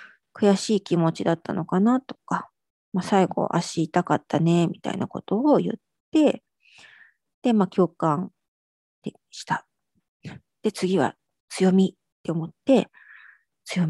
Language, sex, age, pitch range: Japanese, female, 40-59, 175-220 Hz